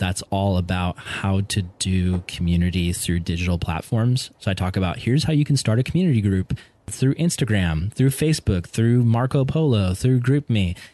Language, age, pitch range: English, 20-39, 95-125 Hz